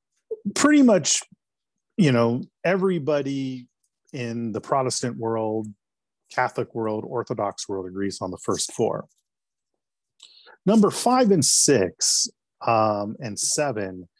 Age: 40-59